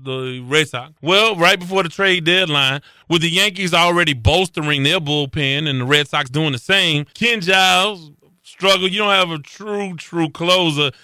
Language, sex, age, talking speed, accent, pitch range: English, male, 30-49, 180 wpm, American, 145-185 Hz